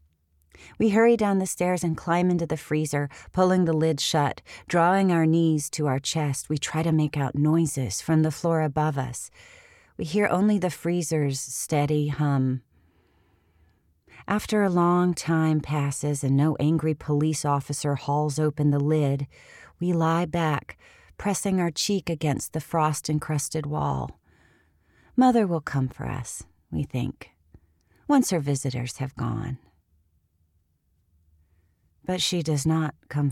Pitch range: 115-160 Hz